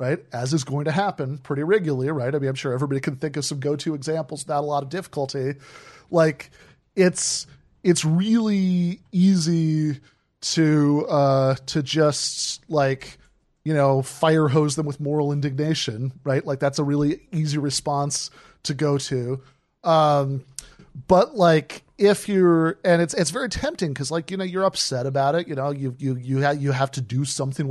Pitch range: 140-165 Hz